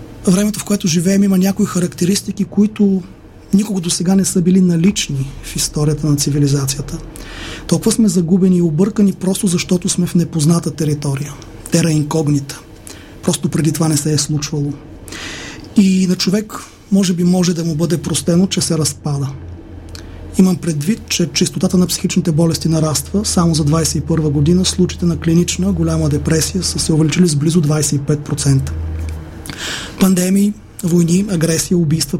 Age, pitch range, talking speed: 30-49, 150-185 Hz, 145 wpm